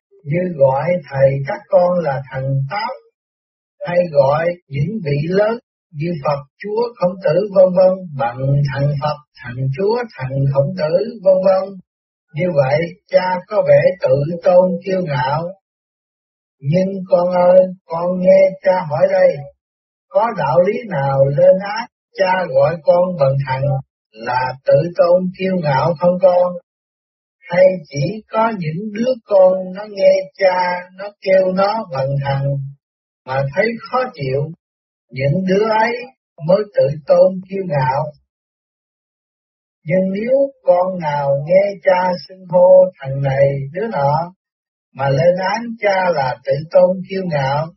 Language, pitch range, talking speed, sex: Vietnamese, 140-195 Hz, 140 wpm, male